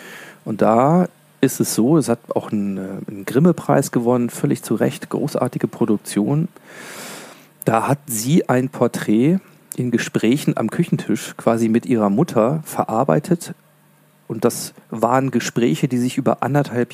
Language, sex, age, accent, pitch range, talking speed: German, male, 40-59, German, 110-150 Hz, 135 wpm